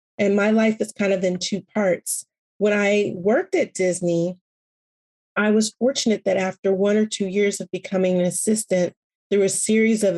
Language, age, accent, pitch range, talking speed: English, 30-49, American, 185-215 Hz, 185 wpm